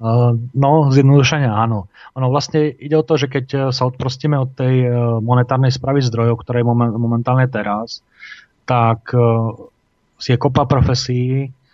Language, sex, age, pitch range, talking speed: Slovak, male, 30-49, 115-130 Hz, 130 wpm